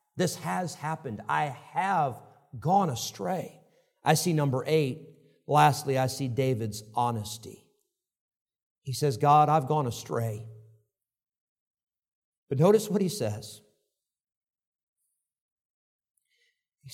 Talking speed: 100 wpm